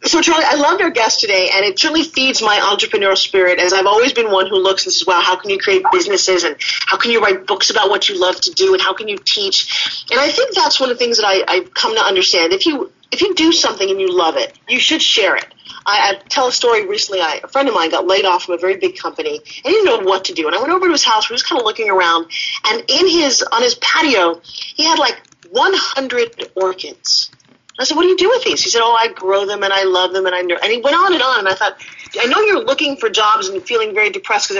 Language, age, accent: English, 40-59, American